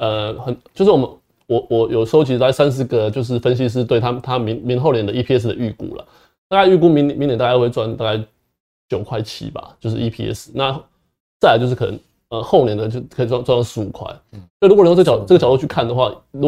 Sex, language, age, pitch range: male, Chinese, 20-39, 110-140 Hz